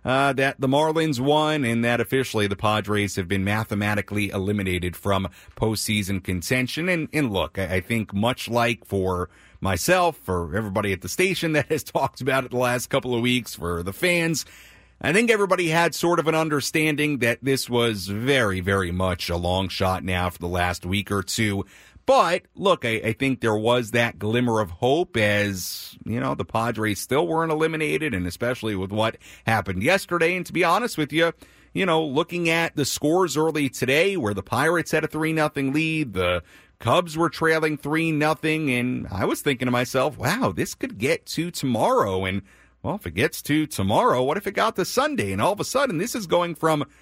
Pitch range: 100-155 Hz